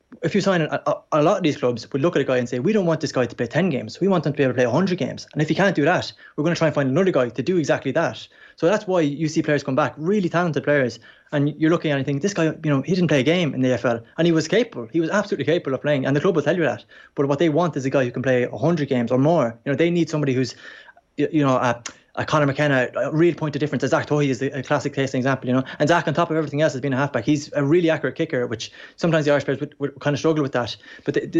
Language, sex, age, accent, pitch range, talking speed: English, male, 20-39, Irish, 130-160 Hz, 325 wpm